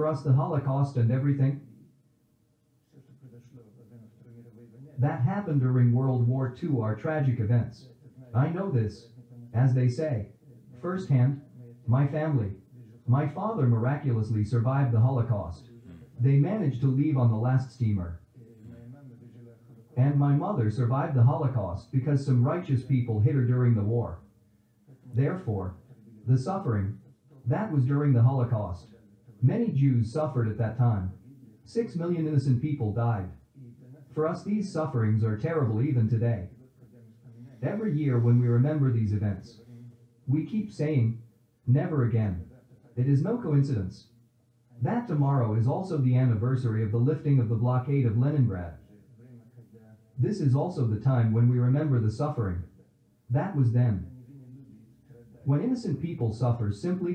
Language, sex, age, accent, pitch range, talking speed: English, male, 40-59, American, 115-140 Hz, 135 wpm